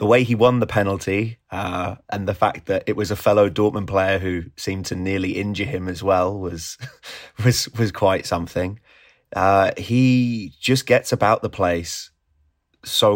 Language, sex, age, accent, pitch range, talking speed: English, male, 20-39, British, 90-105 Hz, 175 wpm